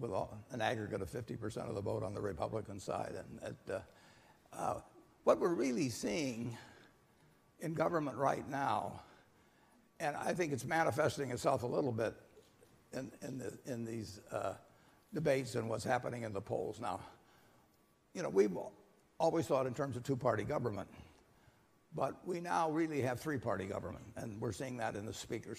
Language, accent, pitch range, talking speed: English, American, 110-140 Hz, 160 wpm